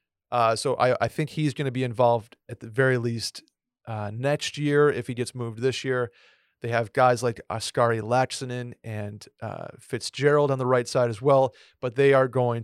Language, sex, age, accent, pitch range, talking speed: English, male, 30-49, American, 115-135 Hz, 200 wpm